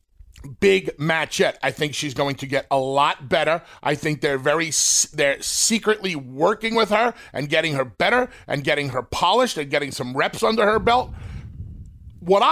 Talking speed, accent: 175 wpm, American